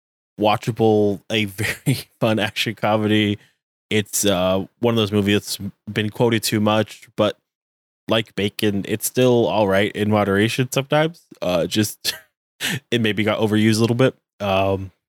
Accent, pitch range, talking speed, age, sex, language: American, 95-115 Hz, 145 wpm, 20-39, male, English